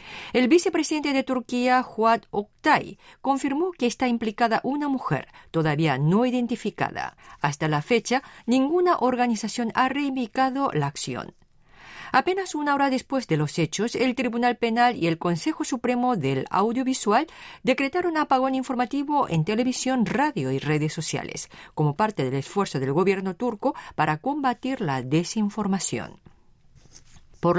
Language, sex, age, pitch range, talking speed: Spanish, female, 40-59, 175-275 Hz, 135 wpm